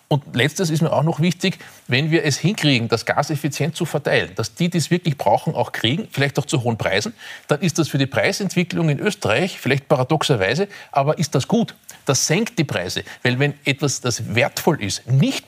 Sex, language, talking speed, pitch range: male, German, 205 wpm, 125-160 Hz